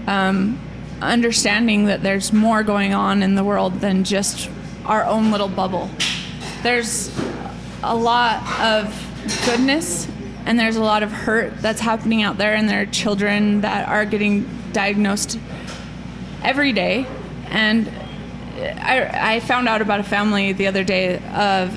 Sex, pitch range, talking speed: female, 200-230 Hz, 145 wpm